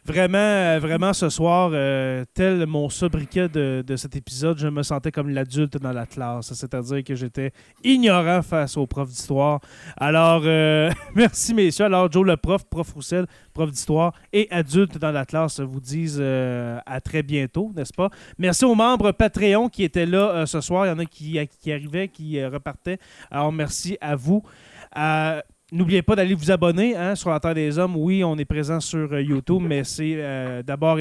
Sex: male